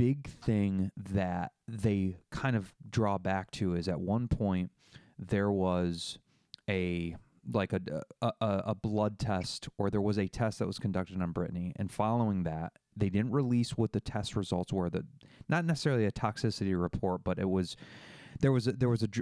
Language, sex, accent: English, male, American